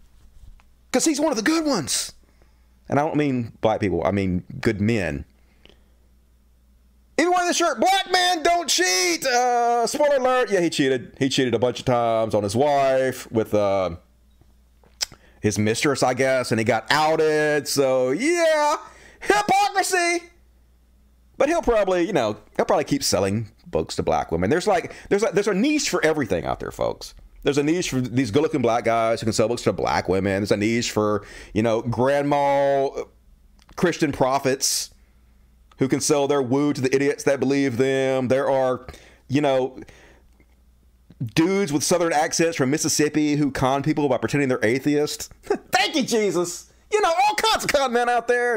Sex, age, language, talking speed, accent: male, 30-49, English, 175 wpm, American